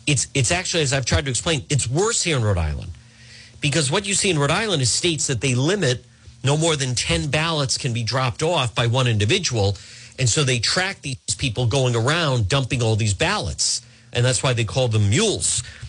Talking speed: 215 wpm